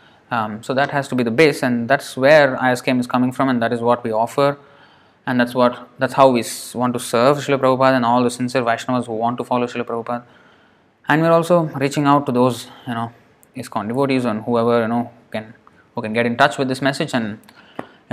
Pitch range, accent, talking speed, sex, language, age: 120-140 Hz, Indian, 230 wpm, male, English, 20-39